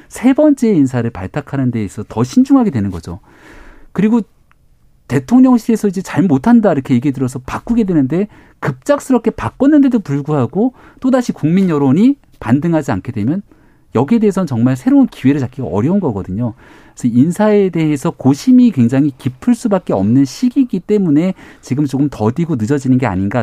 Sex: male